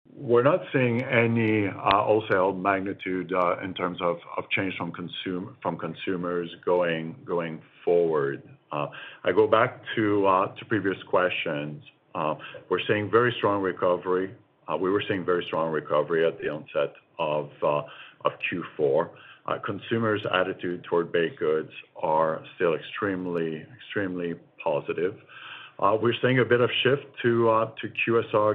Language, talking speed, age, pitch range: English, 150 wpm, 50-69, 85-110 Hz